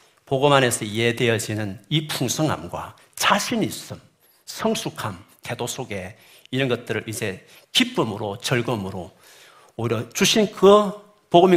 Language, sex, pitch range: Korean, male, 115-160 Hz